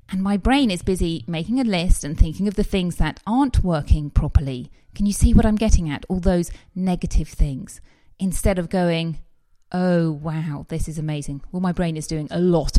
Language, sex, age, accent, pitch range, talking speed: English, female, 30-49, British, 155-195 Hz, 200 wpm